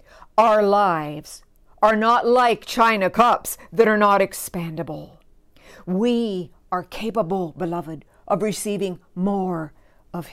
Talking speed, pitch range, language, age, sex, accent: 110 wpm, 170-240 Hz, English, 60-79, female, American